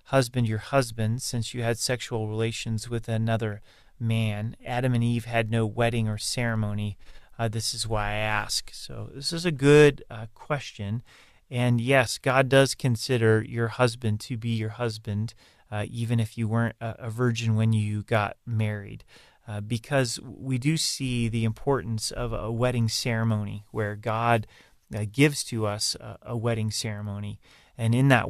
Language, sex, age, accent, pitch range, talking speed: English, male, 30-49, American, 110-120 Hz, 170 wpm